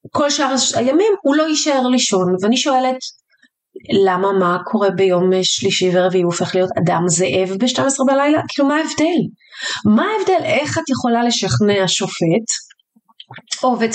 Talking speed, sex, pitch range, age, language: 140 wpm, female, 190-260 Hz, 30-49, Hebrew